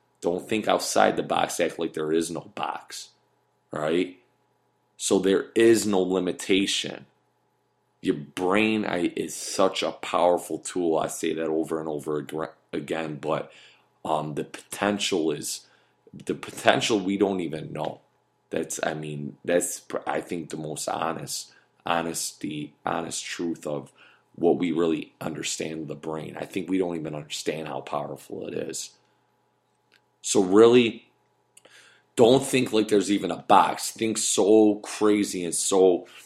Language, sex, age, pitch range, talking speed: English, male, 30-49, 80-105 Hz, 140 wpm